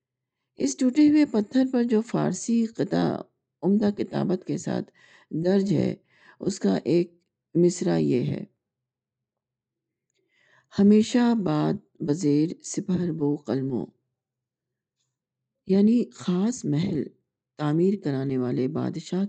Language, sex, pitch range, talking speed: Urdu, female, 130-190 Hz, 105 wpm